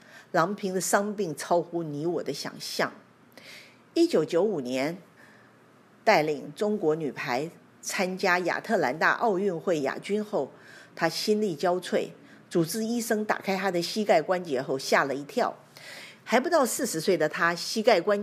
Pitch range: 165-225 Hz